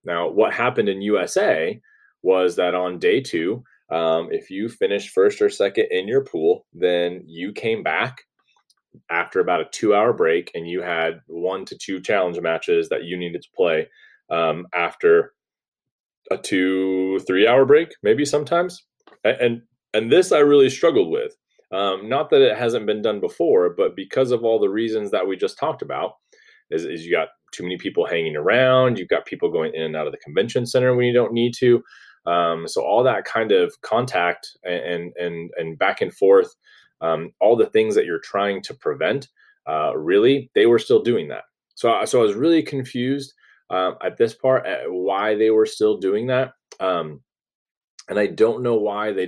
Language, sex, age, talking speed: English, male, 30-49, 190 wpm